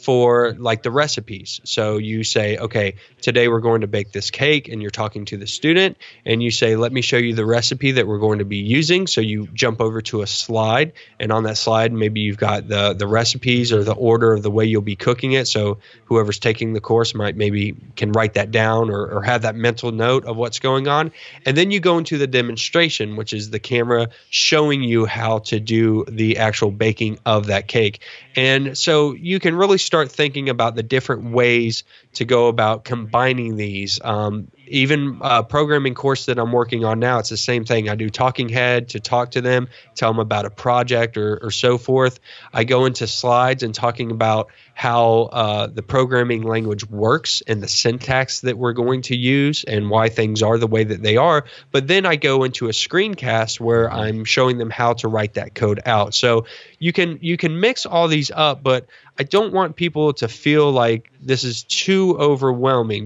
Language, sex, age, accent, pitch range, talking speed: English, male, 20-39, American, 110-130 Hz, 210 wpm